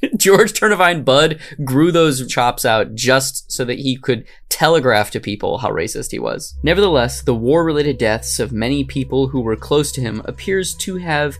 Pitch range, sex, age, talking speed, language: 115-155 Hz, male, 20-39, 180 wpm, English